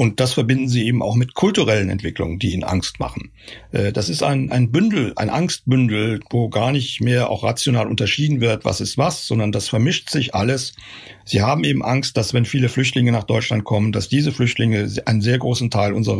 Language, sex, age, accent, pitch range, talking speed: German, male, 60-79, German, 110-135 Hz, 205 wpm